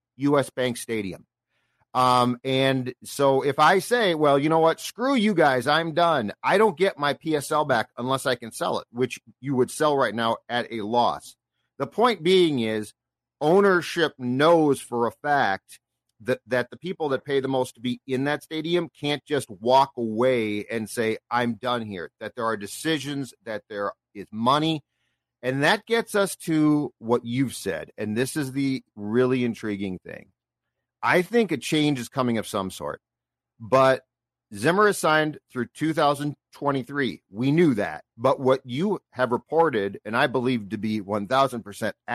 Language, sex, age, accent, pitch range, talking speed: English, male, 40-59, American, 120-155 Hz, 170 wpm